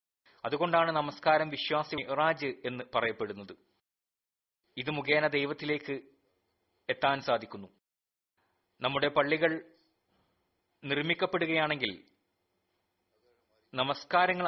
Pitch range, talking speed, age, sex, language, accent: 120-155 Hz, 60 wpm, 30-49, male, Malayalam, native